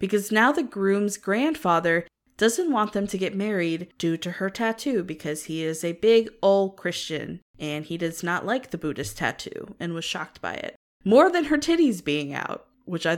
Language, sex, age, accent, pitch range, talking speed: English, female, 20-39, American, 170-215 Hz, 195 wpm